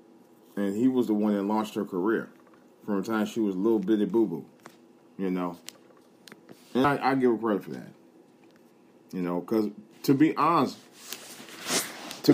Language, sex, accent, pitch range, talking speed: English, male, American, 105-130 Hz, 170 wpm